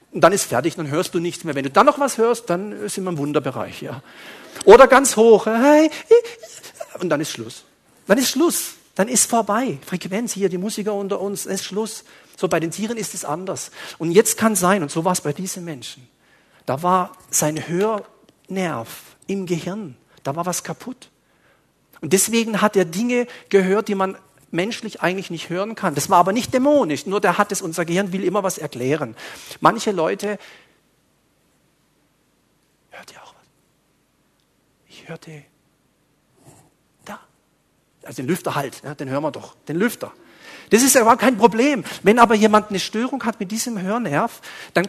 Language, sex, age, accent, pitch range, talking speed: German, male, 50-69, German, 170-225 Hz, 180 wpm